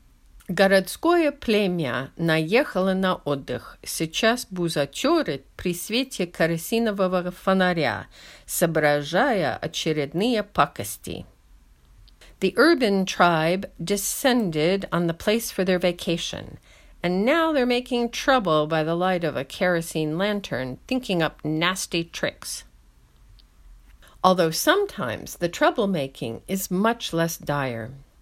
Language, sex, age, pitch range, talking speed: English, female, 50-69, 155-200 Hz, 90 wpm